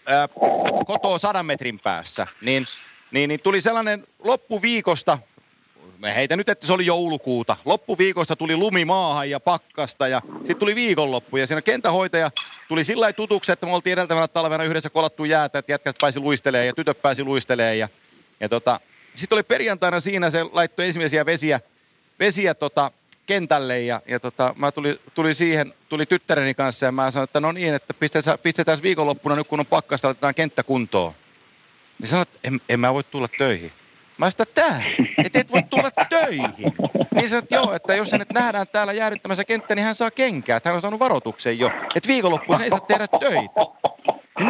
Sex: male